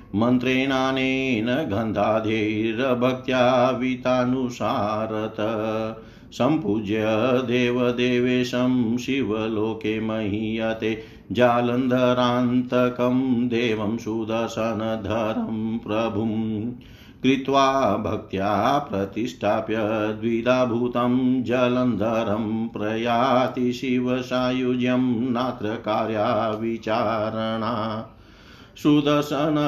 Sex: male